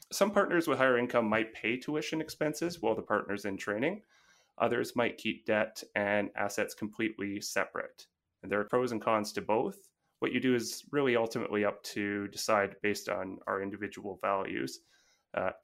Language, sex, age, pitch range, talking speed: English, male, 30-49, 105-125 Hz, 175 wpm